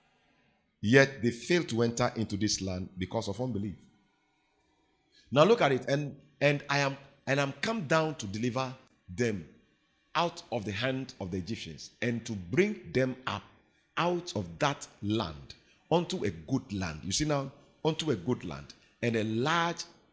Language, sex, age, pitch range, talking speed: English, male, 50-69, 110-170 Hz, 170 wpm